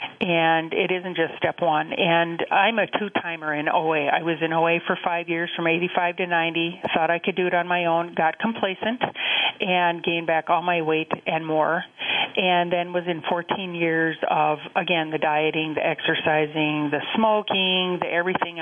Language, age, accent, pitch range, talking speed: English, 40-59, American, 160-195 Hz, 185 wpm